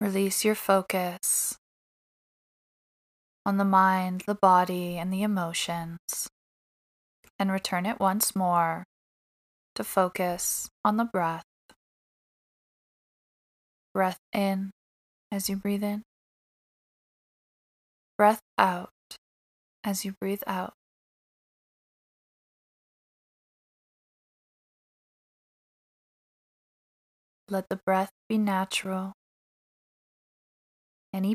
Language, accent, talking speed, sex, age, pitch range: English, American, 75 wpm, male, 20-39, 185-205 Hz